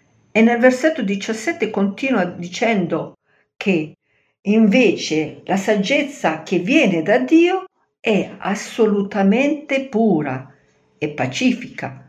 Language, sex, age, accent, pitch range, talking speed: Italian, female, 50-69, native, 150-230 Hz, 95 wpm